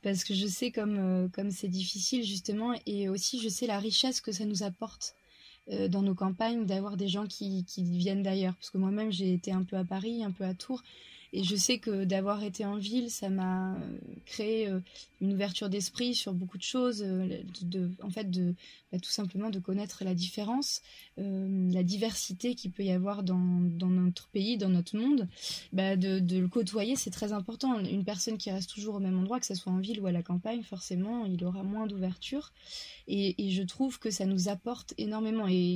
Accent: French